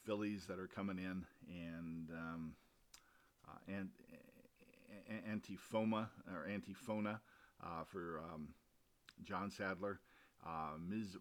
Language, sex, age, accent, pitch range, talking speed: English, male, 50-69, American, 90-100 Hz, 100 wpm